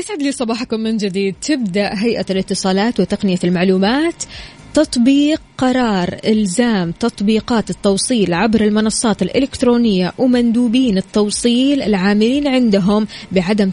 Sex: female